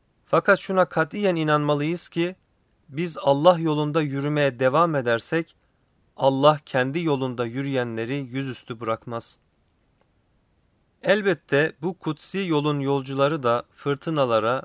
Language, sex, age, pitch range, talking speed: Turkish, male, 40-59, 120-155 Hz, 100 wpm